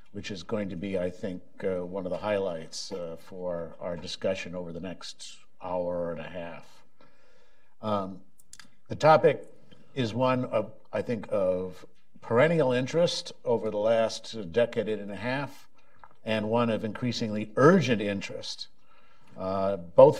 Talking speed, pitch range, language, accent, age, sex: 145 wpm, 100-125 Hz, English, American, 60-79, male